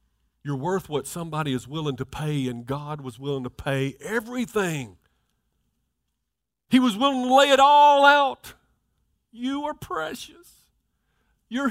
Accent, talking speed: American, 140 wpm